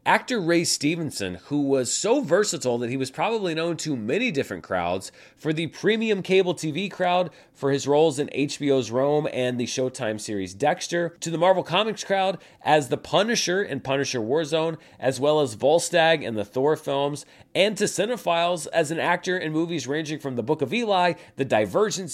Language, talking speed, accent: English, 185 wpm, American